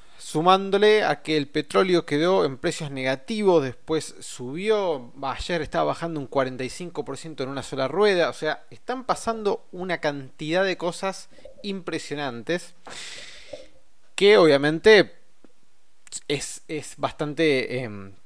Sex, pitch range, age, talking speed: male, 130-180 Hz, 20-39, 115 wpm